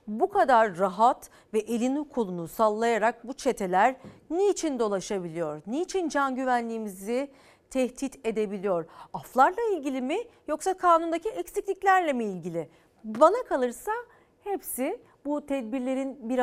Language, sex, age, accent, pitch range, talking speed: Turkish, female, 40-59, native, 195-255 Hz, 110 wpm